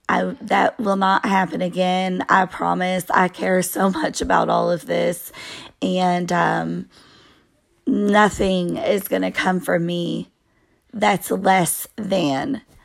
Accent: American